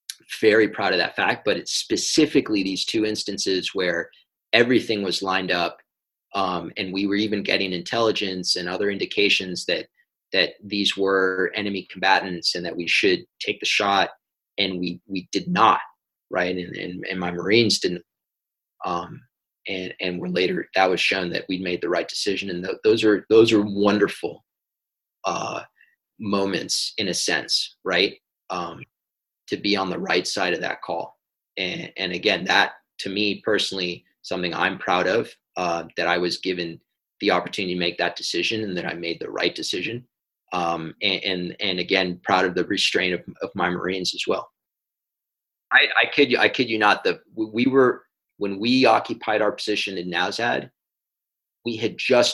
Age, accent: 30-49, American